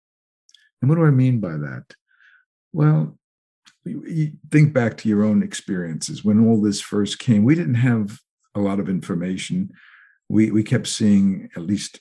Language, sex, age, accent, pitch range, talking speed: English, male, 60-79, American, 100-130 Hz, 165 wpm